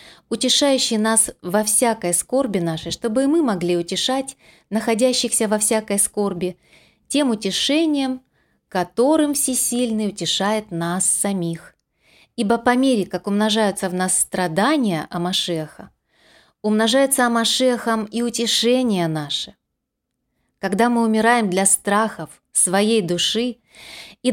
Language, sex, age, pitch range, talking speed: Russian, female, 20-39, 185-255 Hz, 110 wpm